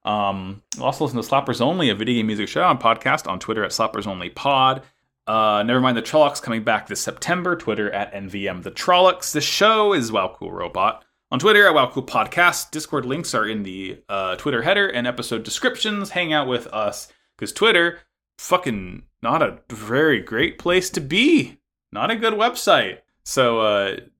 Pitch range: 110-165 Hz